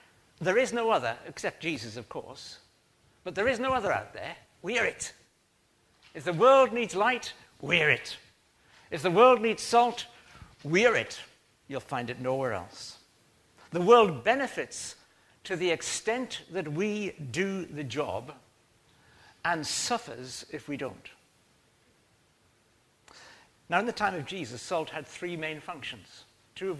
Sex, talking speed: male, 145 wpm